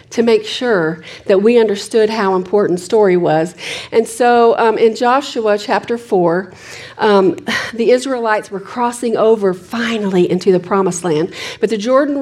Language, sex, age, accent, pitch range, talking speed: English, female, 40-59, American, 195-250 Hz, 145 wpm